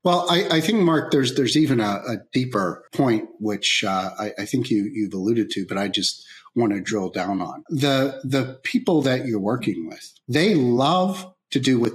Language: English